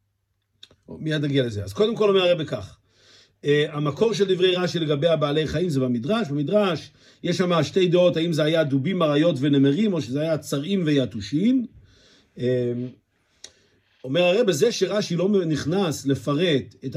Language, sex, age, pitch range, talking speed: Hebrew, male, 50-69, 135-195 Hz, 155 wpm